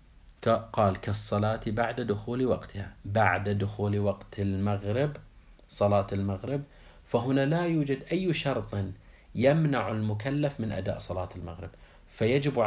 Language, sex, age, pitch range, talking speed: Arabic, male, 30-49, 95-115 Hz, 110 wpm